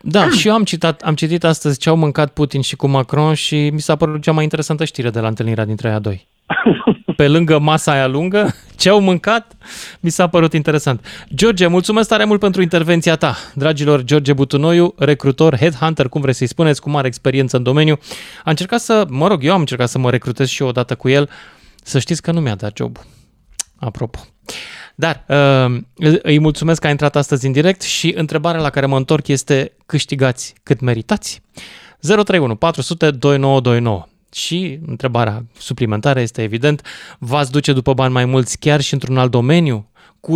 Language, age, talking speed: Romanian, 20-39, 185 wpm